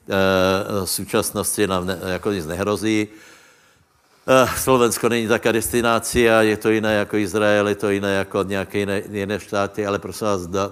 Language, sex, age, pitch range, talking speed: Slovak, male, 60-79, 100-110 Hz, 160 wpm